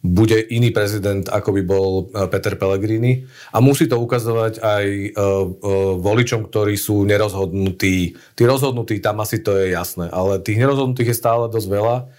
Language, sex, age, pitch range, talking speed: Slovak, male, 40-59, 100-115 Hz, 155 wpm